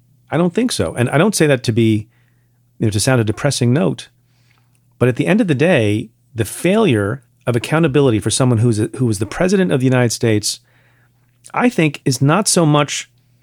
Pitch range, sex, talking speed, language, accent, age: 120-140 Hz, male, 210 wpm, English, American, 40-59